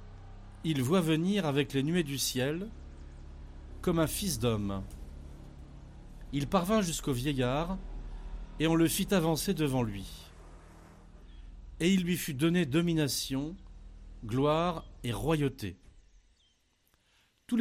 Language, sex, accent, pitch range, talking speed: French, male, French, 110-175 Hz, 110 wpm